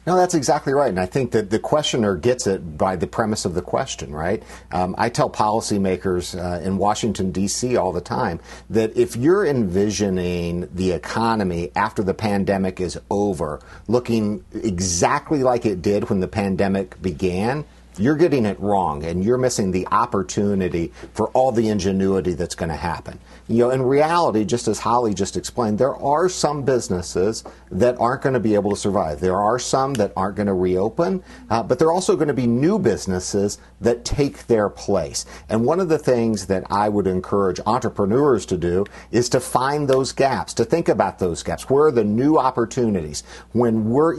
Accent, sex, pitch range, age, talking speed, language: American, male, 95-125 Hz, 50-69, 190 wpm, English